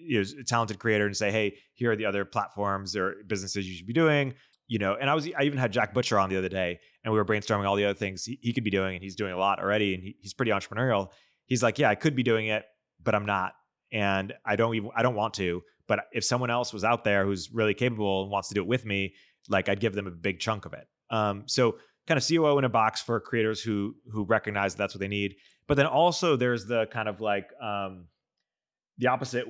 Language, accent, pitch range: English, American, 100-120 Hz